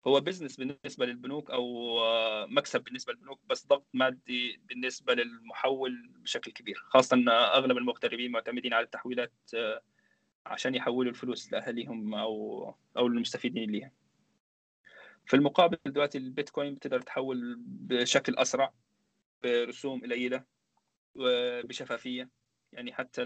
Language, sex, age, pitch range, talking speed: Arabic, male, 20-39, 115-135 Hz, 110 wpm